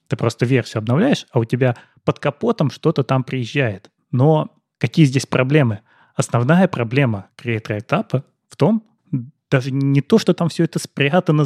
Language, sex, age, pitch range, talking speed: Russian, male, 20-39, 115-145 Hz, 155 wpm